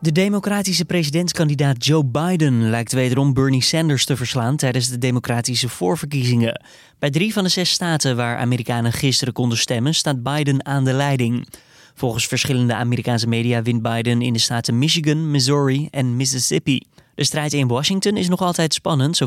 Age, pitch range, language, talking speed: 20-39, 125-155 Hz, Dutch, 165 wpm